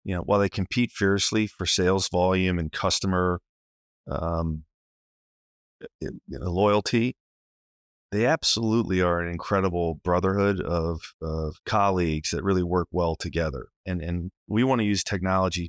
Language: English